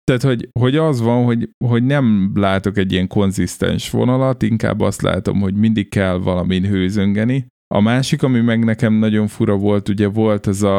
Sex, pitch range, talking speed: male, 95-115 Hz, 185 wpm